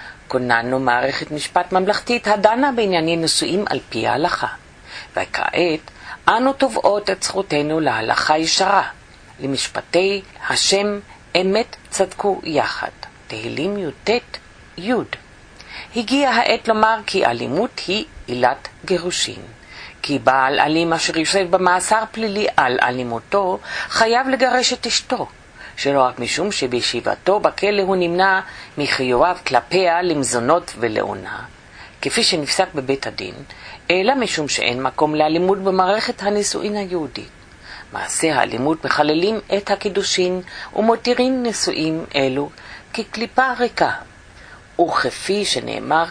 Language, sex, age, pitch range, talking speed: English, female, 50-69, 145-210 Hz, 105 wpm